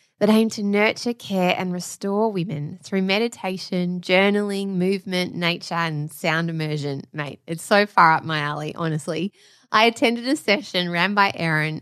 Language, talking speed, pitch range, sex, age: English, 155 wpm, 160-205 Hz, female, 20-39